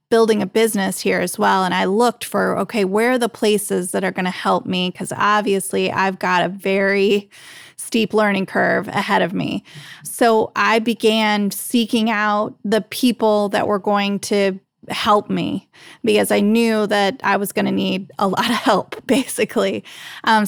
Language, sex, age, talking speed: English, female, 20-39, 180 wpm